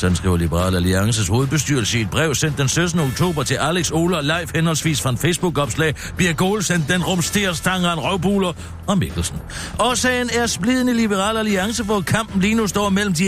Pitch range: 130-200 Hz